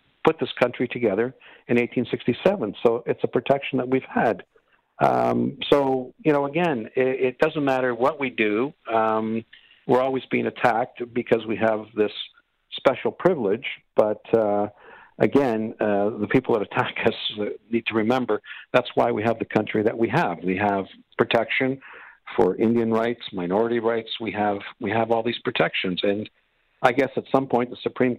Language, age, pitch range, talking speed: English, 50-69, 105-130 Hz, 170 wpm